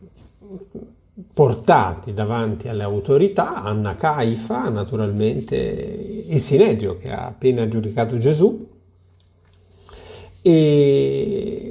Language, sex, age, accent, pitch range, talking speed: Italian, male, 50-69, native, 90-140 Hz, 75 wpm